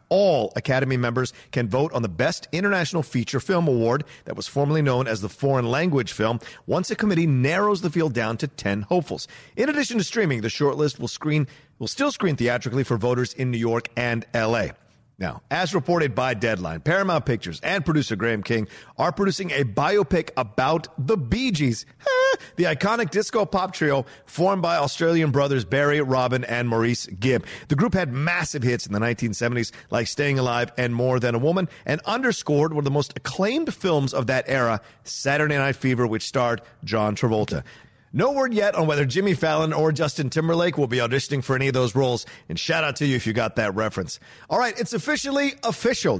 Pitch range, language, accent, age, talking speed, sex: 125-170 Hz, English, American, 40-59, 195 wpm, male